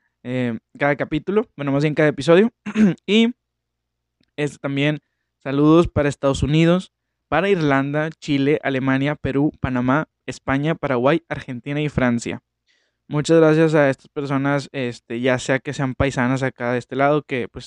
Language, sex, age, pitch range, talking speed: Spanish, male, 20-39, 120-155 Hz, 145 wpm